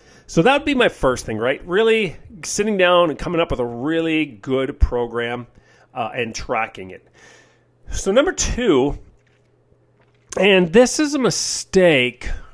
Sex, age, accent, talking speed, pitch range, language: male, 40-59, American, 150 wpm, 135-215 Hz, English